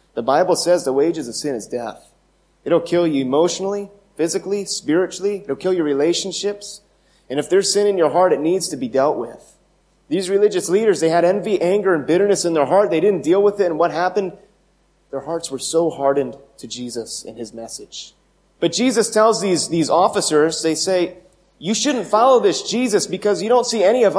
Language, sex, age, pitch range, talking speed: English, male, 30-49, 155-210 Hz, 200 wpm